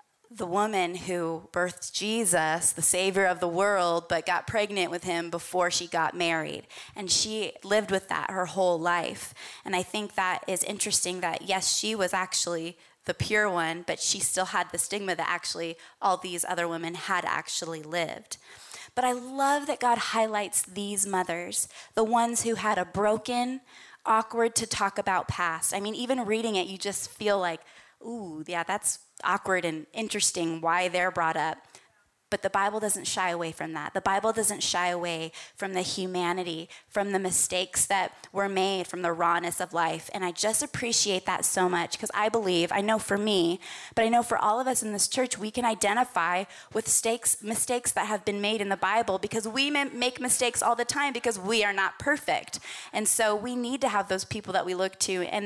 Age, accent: 20-39, American